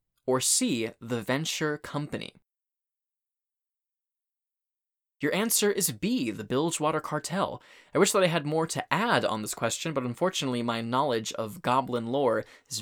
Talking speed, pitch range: 145 wpm, 120-165 Hz